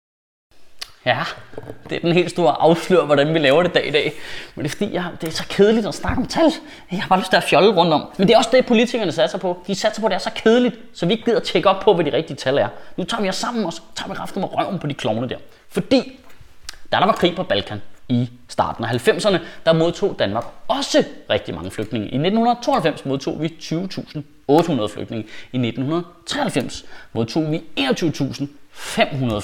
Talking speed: 220 wpm